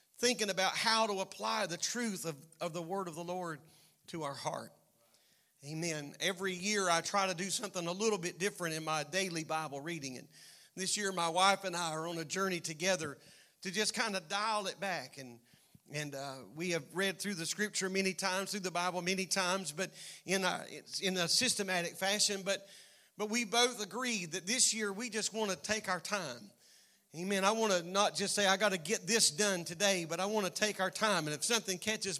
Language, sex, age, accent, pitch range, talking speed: English, male, 40-59, American, 170-210 Hz, 220 wpm